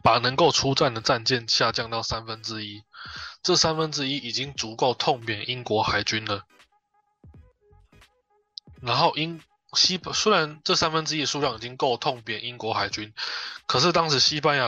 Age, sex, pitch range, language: 20-39, male, 115-180 Hz, Chinese